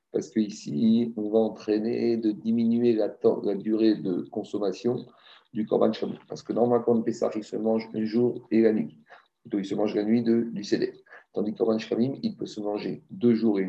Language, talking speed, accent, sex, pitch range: French, 215 wpm, French, male, 105-115 Hz